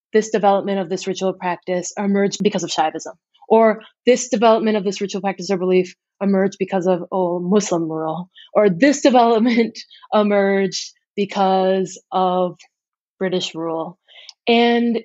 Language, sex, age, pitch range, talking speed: English, female, 20-39, 185-235 Hz, 135 wpm